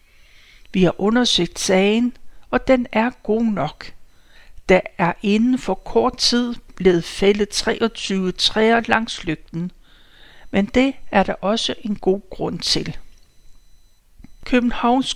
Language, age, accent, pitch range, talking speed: Danish, 60-79, native, 195-240 Hz, 125 wpm